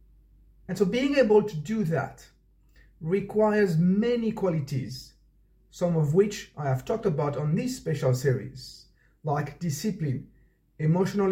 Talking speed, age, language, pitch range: 125 wpm, 50-69, English, 135-190 Hz